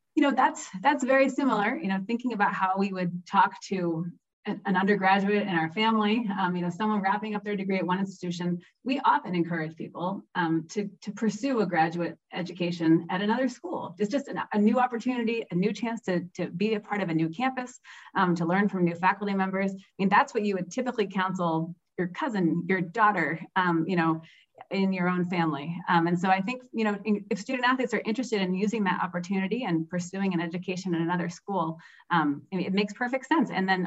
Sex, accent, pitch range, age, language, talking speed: female, American, 170-210 Hz, 30-49, English, 210 wpm